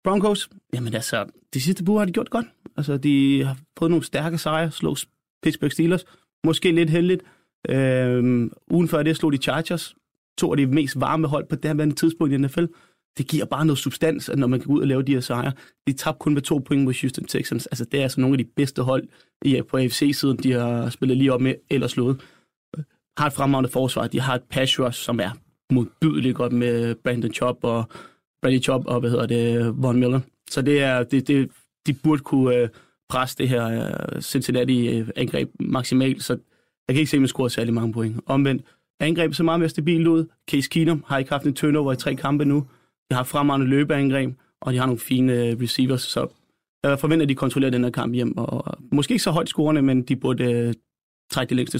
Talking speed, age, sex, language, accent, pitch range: 215 wpm, 30-49, male, Danish, native, 125-155 Hz